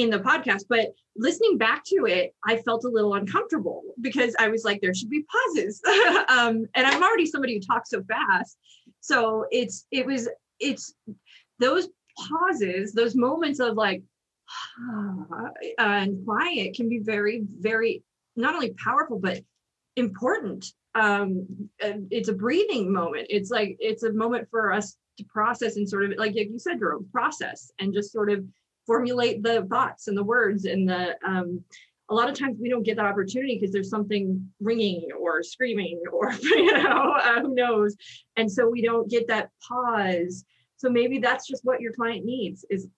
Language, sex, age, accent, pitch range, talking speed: English, female, 30-49, American, 205-245 Hz, 175 wpm